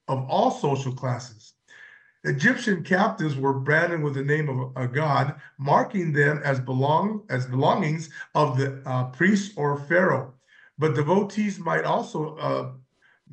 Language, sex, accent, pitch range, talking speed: English, male, American, 140-190 Hz, 145 wpm